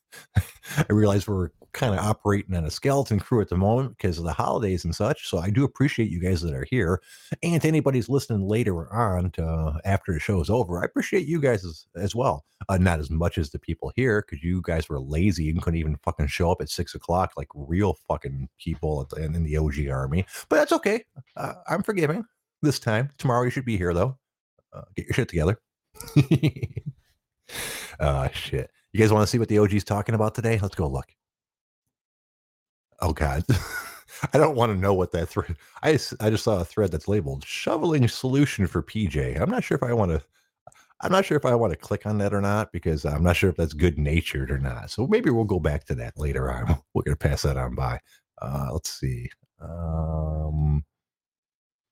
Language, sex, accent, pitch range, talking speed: English, male, American, 80-110 Hz, 215 wpm